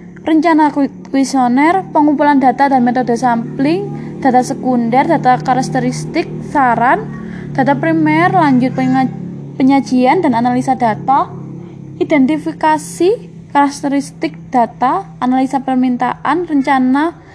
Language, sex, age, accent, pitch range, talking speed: Indonesian, female, 20-39, native, 235-285 Hz, 85 wpm